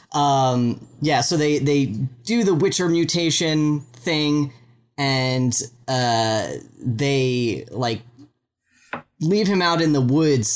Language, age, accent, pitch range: English, 10-29, American, 120-145 Hz